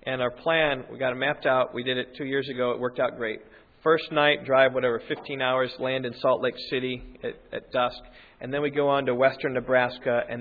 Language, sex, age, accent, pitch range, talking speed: English, male, 40-59, American, 120-145 Hz, 235 wpm